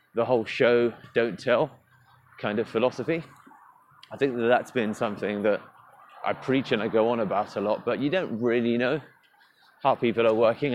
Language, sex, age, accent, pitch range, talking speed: English, male, 30-49, British, 110-140 Hz, 185 wpm